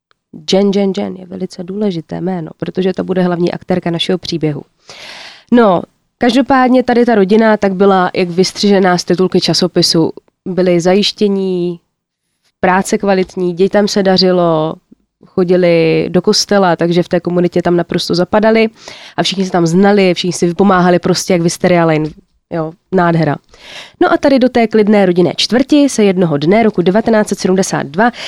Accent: native